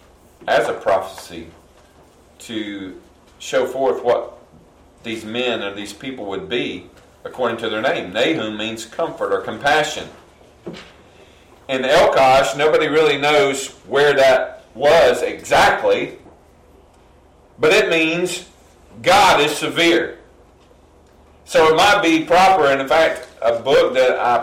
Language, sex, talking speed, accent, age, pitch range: English, male, 125 wpm, American, 40-59, 115-170 Hz